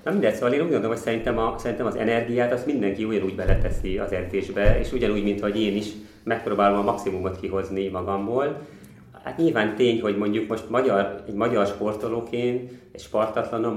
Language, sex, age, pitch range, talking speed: Hungarian, male, 30-49, 95-115 Hz, 180 wpm